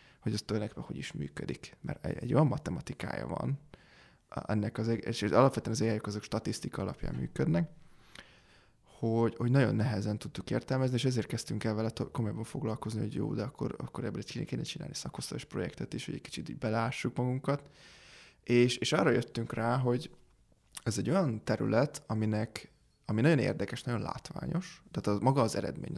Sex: male